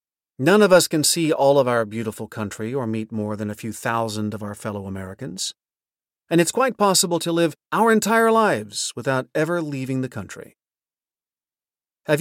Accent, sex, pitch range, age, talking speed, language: American, male, 110-165 Hz, 40-59, 175 wpm, English